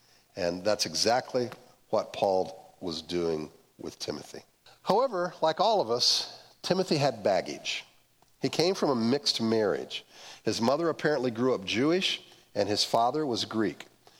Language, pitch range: English, 110-150 Hz